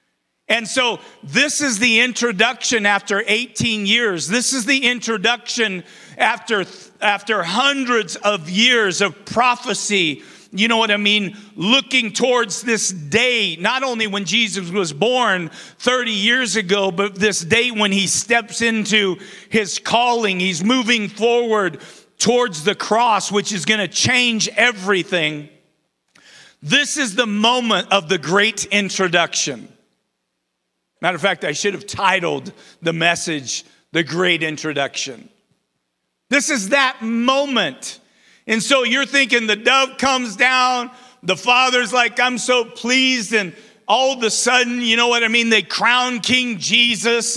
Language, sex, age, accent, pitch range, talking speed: English, male, 40-59, American, 200-245 Hz, 140 wpm